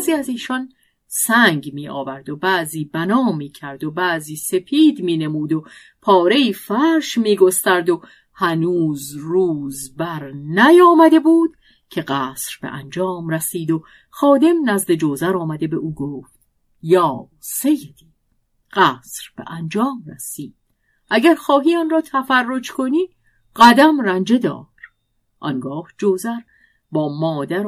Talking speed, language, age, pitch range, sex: 130 wpm, Persian, 50-69, 160-255 Hz, female